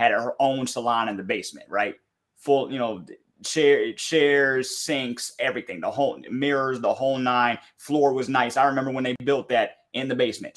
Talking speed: 180 wpm